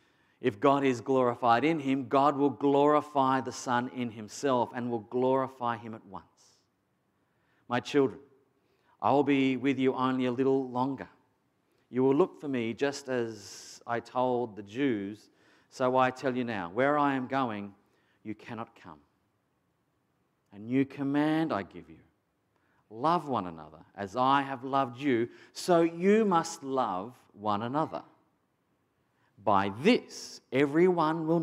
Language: English